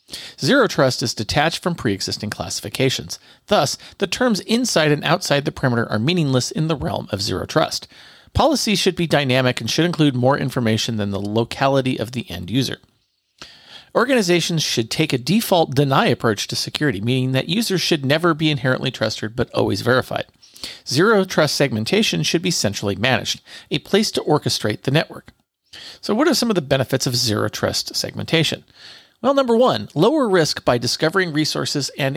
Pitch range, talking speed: 120-175 Hz, 170 wpm